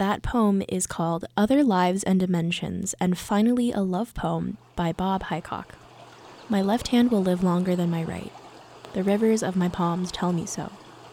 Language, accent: English, American